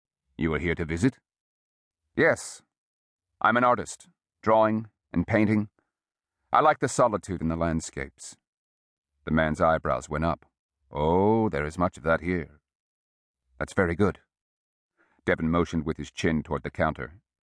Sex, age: male, 40-59